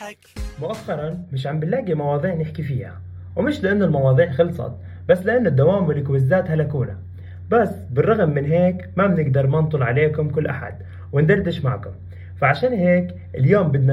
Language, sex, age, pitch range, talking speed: Arabic, male, 30-49, 120-180 Hz, 140 wpm